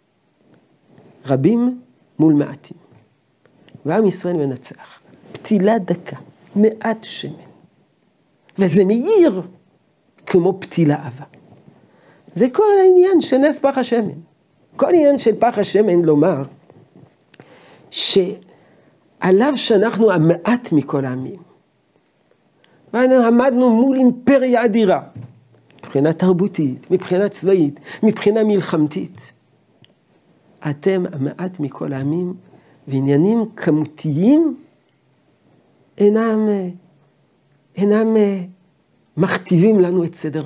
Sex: male